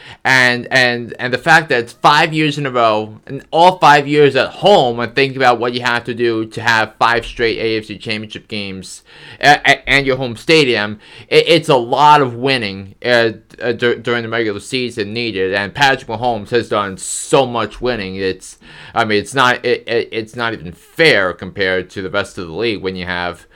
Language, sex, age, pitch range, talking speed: English, male, 20-39, 110-130 Hz, 195 wpm